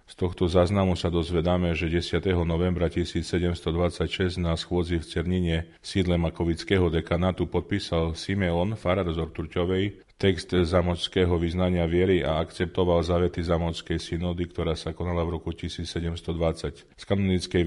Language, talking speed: Slovak, 130 wpm